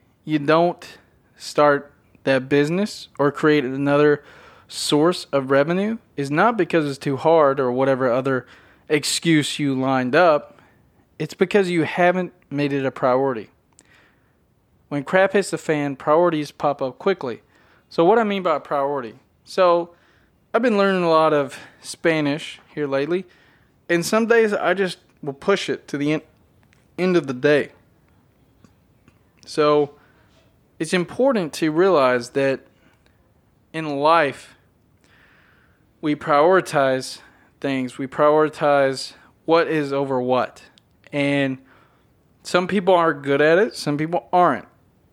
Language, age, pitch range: English, 20-39, 135-170 Hz